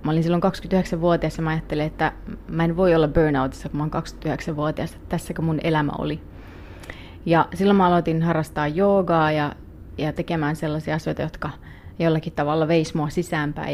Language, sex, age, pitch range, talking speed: Finnish, female, 30-49, 150-175 Hz, 165 wpm